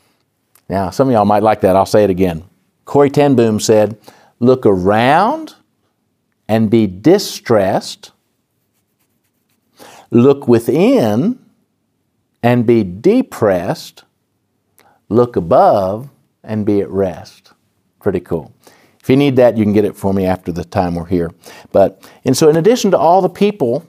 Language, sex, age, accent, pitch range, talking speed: English, male, 50-69, American, 100-130 Hz, 140 wpm